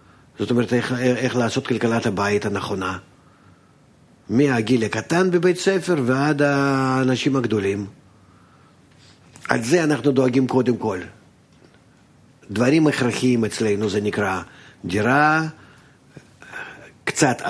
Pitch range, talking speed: 105-140 Hz, 95 wpm